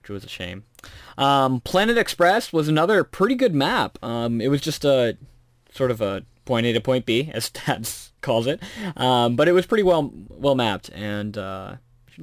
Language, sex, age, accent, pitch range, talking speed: English, male, 20-39, American, 105-140 Hz, 190 wpm